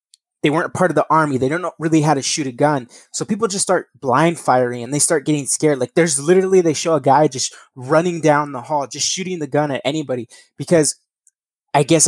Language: English